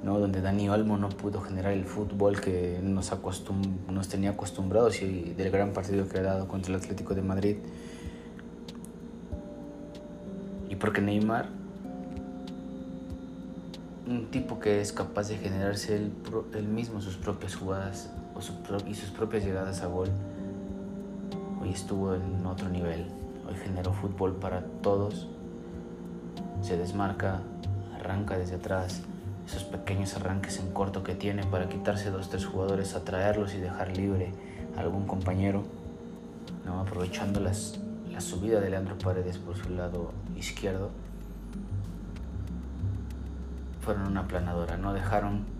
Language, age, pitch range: Spanish, 30-49, 90-100 Hz